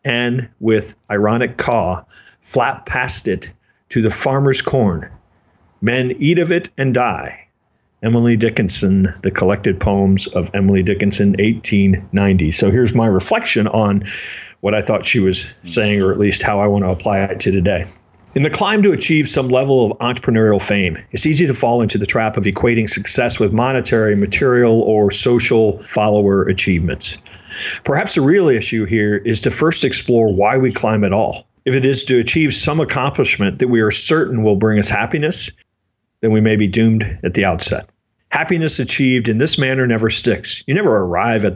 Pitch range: 100-125 Hz